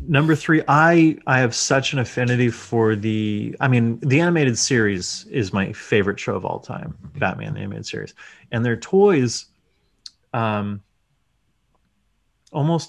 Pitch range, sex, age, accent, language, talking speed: 100-140 Hz, male, 30-49, American, English, 145 wpm